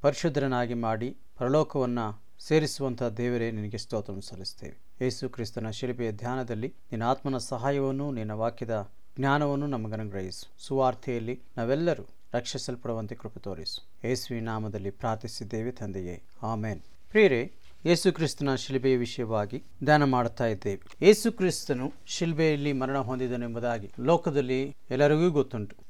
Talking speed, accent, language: 95 wpm, native, Kannada